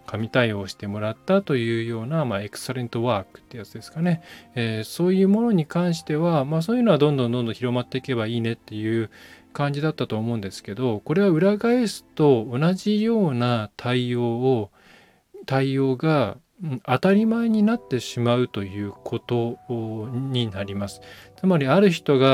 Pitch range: 110-155 Hz